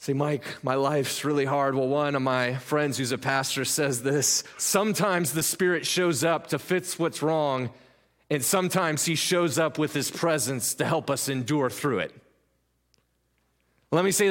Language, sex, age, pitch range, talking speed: English, male, 30-49, 125-170 Hz, 175 wpm